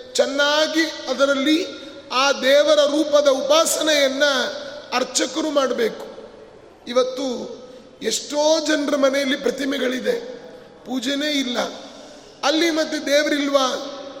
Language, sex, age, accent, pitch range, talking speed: Kannada, male, 30-49, native, 265-300 Hz, 75 wpm